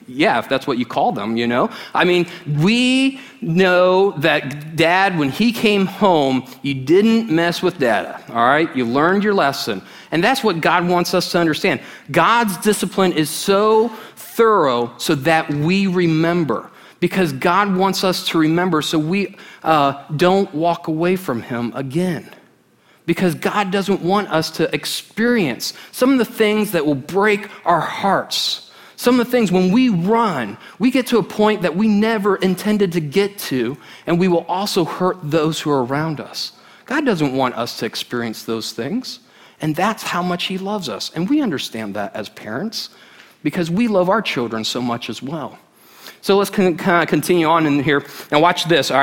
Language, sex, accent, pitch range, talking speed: English, male, American, 145-200 Hz, 185 wpm